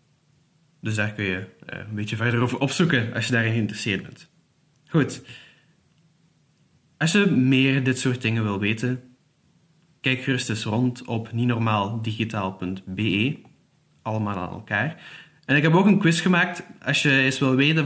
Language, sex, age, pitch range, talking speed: Dutch, male, 20-39, 115-150 Hz, 150 wpm